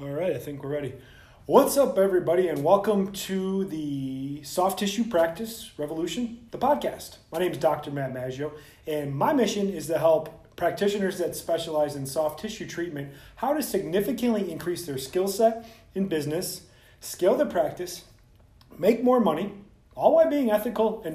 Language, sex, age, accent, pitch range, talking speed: English, male, 30-49, American, 135-190 Hz, 165 wpm